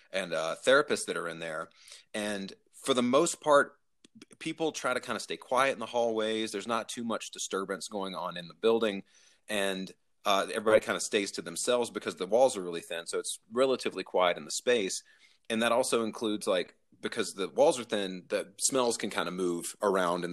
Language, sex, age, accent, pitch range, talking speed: English, male, 30-49, American, 100-155 Hz, 210 wpm